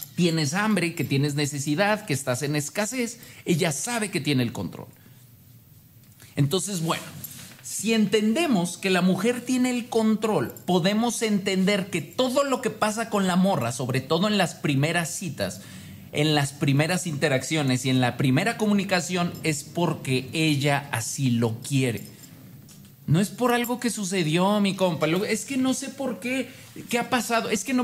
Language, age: Spanish, 40-59